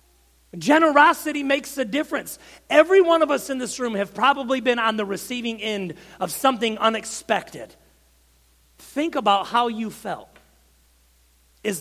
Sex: male